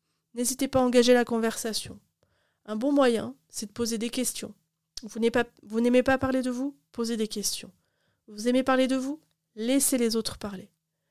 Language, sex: French, female